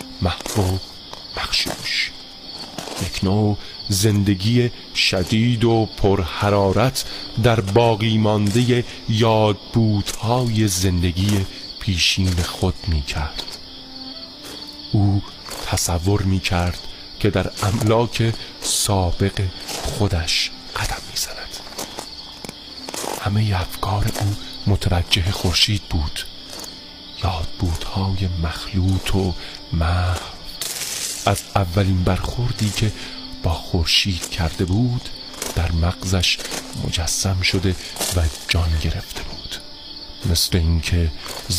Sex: male